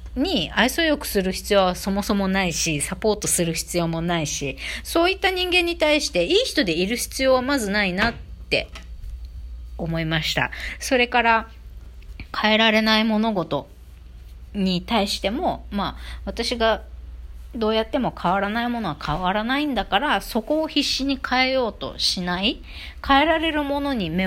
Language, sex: Japanese, female